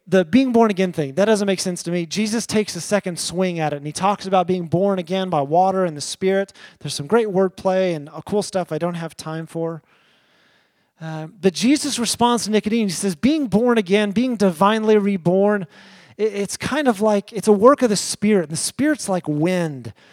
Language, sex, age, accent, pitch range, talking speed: English, male, 30-49, American, 170-215 Hz, 210 wpm